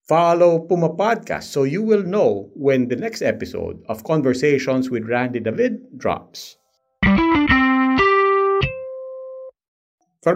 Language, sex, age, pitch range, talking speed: English, male, 50-69, 130-170 Hz, 105 wpm